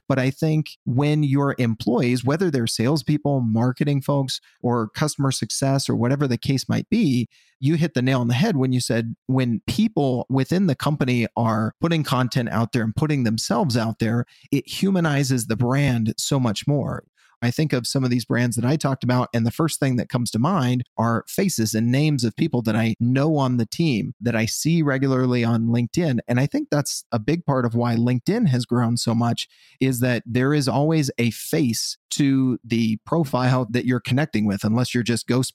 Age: 30-49